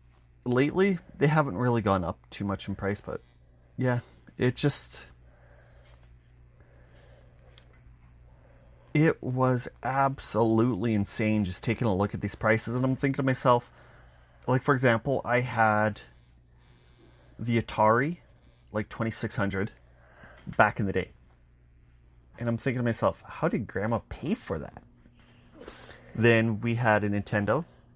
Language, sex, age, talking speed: English, male, 30-49, 125 wpm